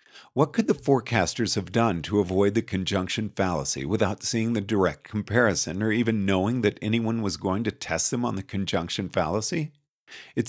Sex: male